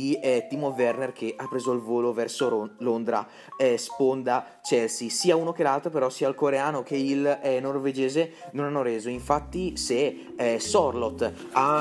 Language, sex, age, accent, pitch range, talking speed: Italian, male, 30-49, native, 120-150 Hz, 170 wpm